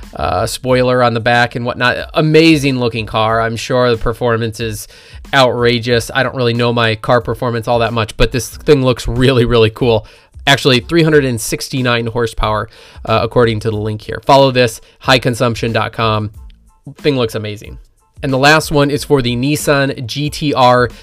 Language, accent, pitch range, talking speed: English, American, 115-145 Hz, 165 wpm